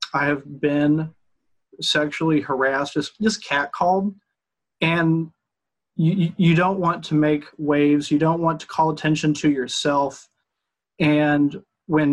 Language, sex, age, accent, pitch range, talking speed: English, male, 30-49, American, 145-170 Hz, 130 wpm